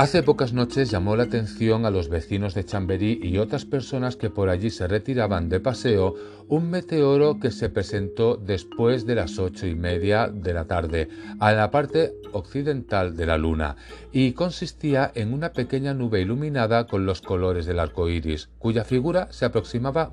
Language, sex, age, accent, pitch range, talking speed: Spanish, male, 40-59, Spanish, 95-130 Hz, 175 wpm